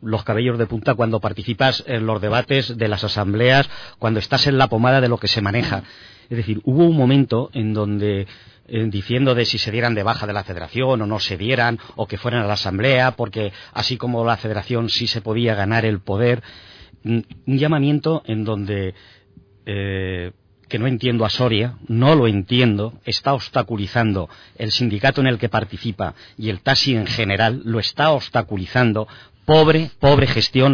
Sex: male